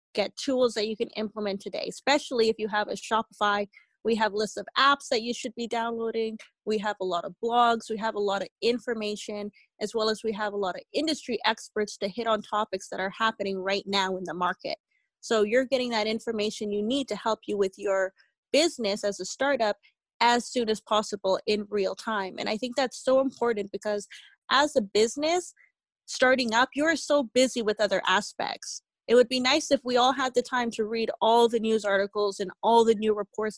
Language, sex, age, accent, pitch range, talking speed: English, female, 20-39, American, 205-250 Hz, 215 wpm